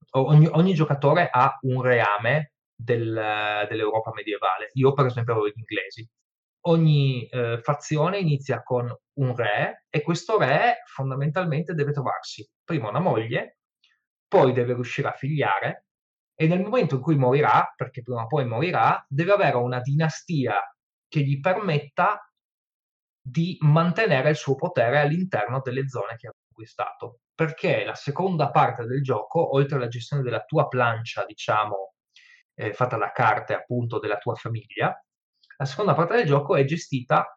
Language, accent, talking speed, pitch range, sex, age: Italian, native, 150 wpm, 115-155 Hz, male, 20-39